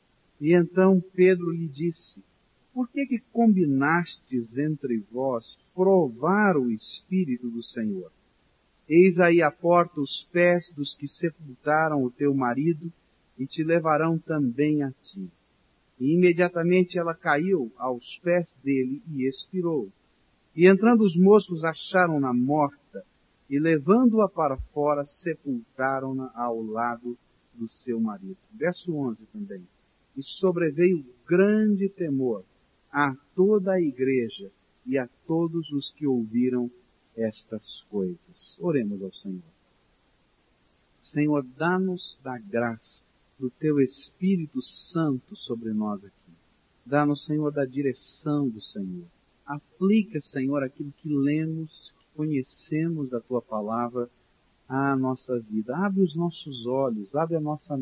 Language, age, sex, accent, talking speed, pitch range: Portuguese, 50-69, male, Brazilian, 120 wpm, 125-175 Hz